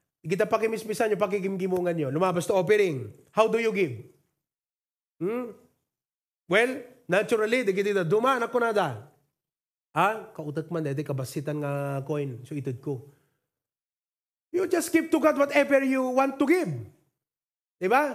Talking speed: 135 wpm